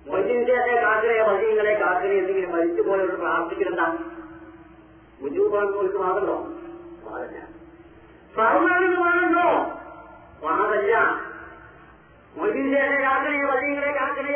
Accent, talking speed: native, 80 wpm